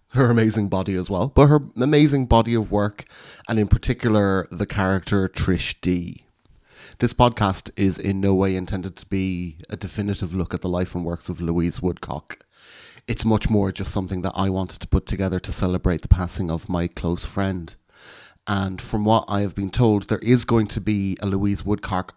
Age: 30-49